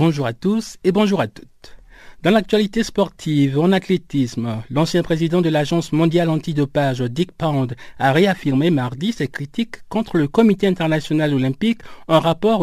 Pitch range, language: 140-190 Hz, French